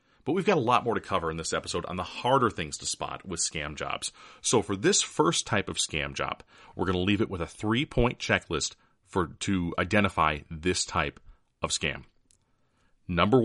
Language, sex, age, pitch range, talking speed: English, male, 30-49, 85-115 Hz, 200 wpm